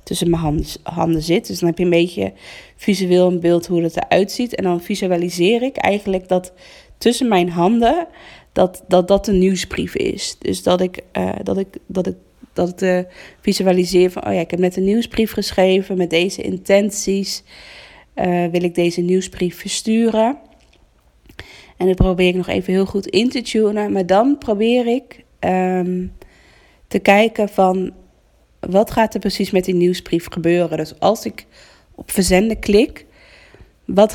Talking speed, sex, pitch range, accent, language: 155 wpm, female, 175-200 Hz, Dutch, Dutch